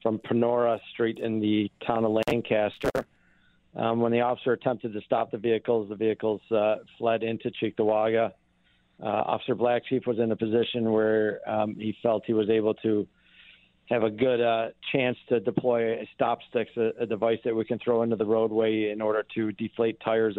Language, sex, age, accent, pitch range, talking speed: English, male, 50-69, American, 110-120 Hz, 185 wpm